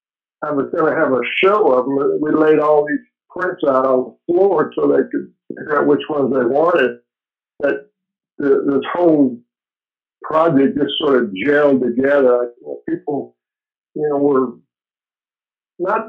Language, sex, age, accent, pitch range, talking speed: English, male, 60-79, American, 130-190 Hz, 155 wpm